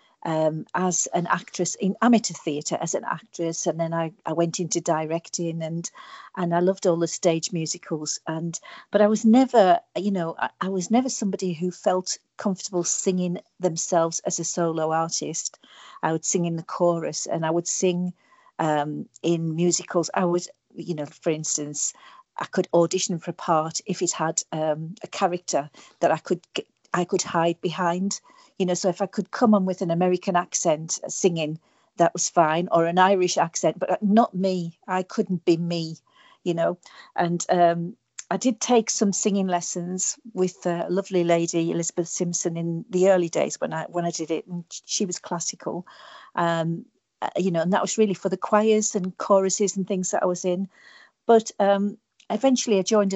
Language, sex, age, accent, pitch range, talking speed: English, female, 50-69, British, 170-195 Hz, 185 wpm